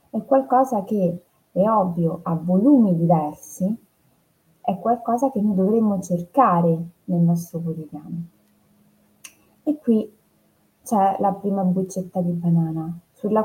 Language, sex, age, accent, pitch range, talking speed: Italian, female, 20-39, native, 170-205 Hz, 115 wpm